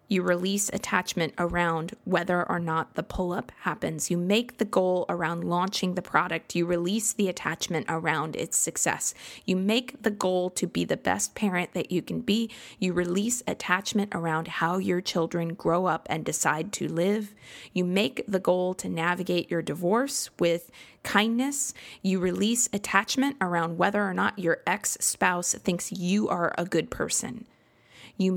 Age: 20-39